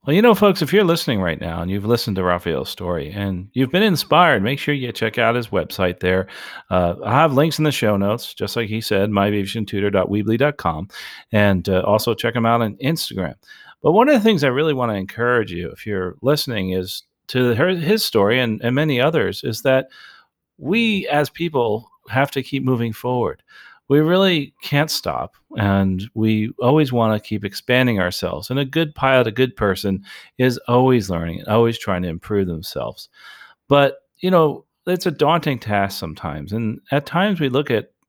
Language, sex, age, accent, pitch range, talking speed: English, male, 40-59, American, 100-145 Hz, 190 wpm